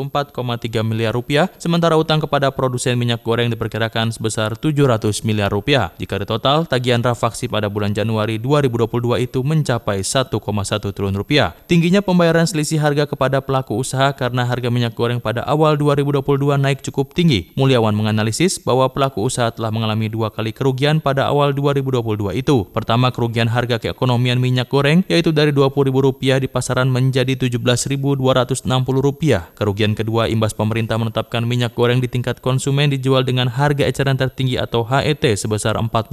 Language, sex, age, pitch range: Indonesian, male, 20-39, 115-140 Hz